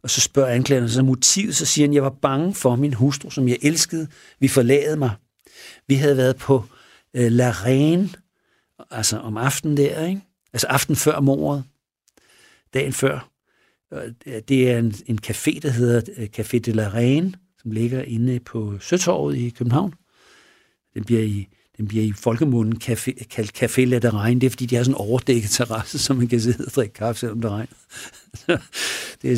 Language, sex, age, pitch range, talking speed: Danish, male, 60-79, 120-145 Hz, 170 wpm